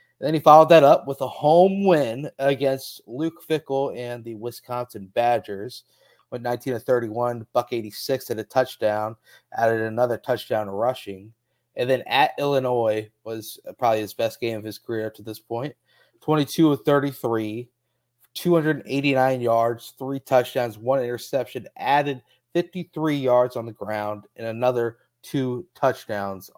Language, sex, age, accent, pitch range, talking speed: English, male, 30-49, American, 110-135 Hz, 145 wpm